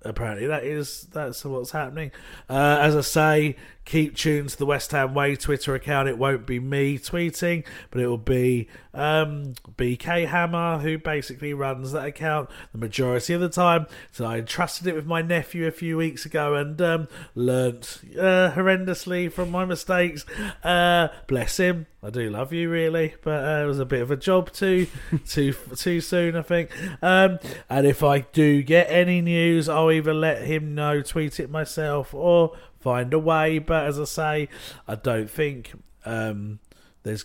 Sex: male